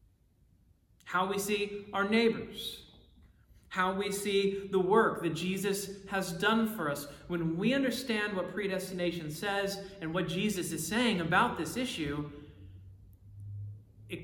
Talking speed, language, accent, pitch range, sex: 130 wpm, English, American, 145-195 Hz, male